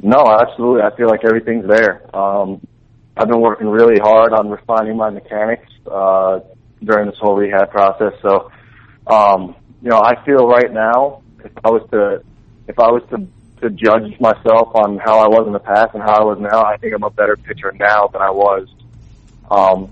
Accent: American